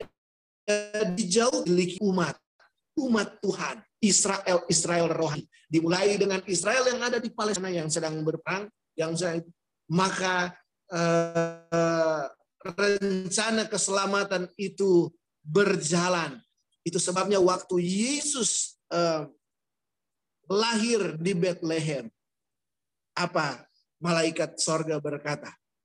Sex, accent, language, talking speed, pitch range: male, native, Indonesian, 95 wpm, 170-220 Hz